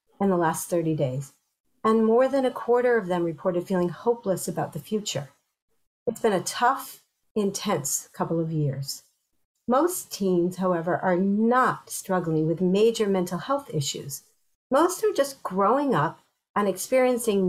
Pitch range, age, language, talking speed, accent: 180-235 Hz, 50-69, English, 150 wpm, American